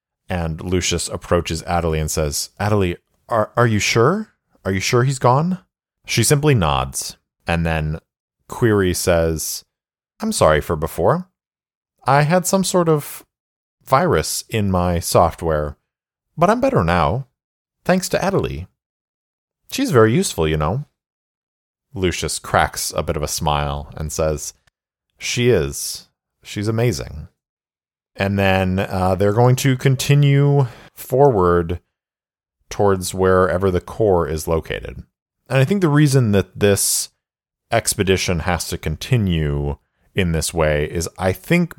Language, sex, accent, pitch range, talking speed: English, male, American, 80-120 Hz, 130 wpm